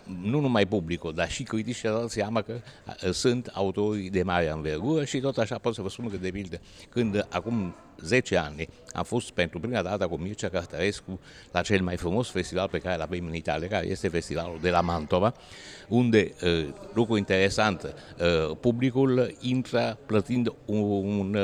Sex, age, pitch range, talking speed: male, 60-79, 90-115 Hz, 160 wpm